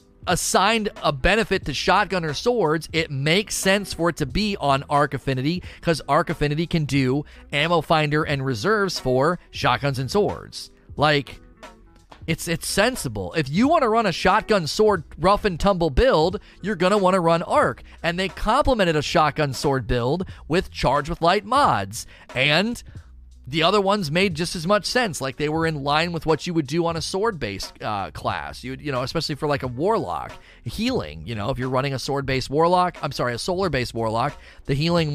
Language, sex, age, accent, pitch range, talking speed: English, male, 30-49, American, 130-175 Hz, 185 wpm